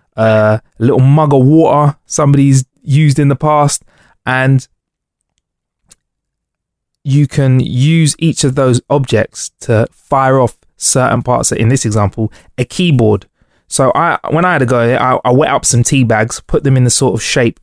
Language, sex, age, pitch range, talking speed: English, male, 20-39, 115-140 Hz, 175 wpm